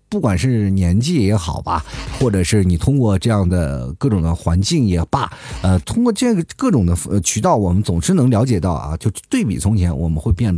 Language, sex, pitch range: Chinese, male, 95-130 Hz